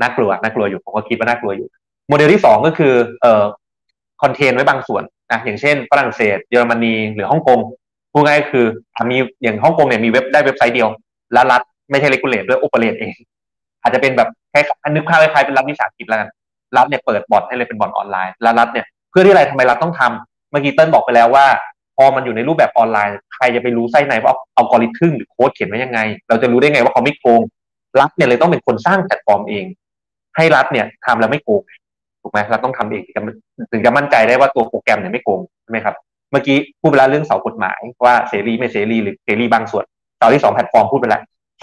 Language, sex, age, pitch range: Thai, male, 20-39, 115-145 Hz